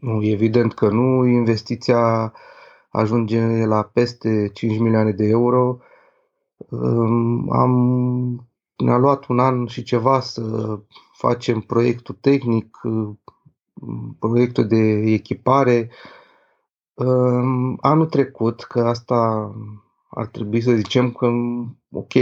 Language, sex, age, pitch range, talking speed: Romanian, male, 30-49, 115-145 Hz, 95 wpm